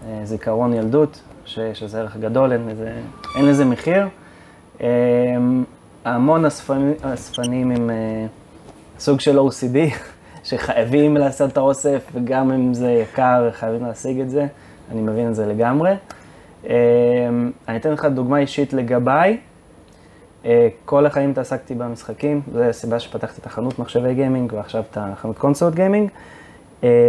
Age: 20-39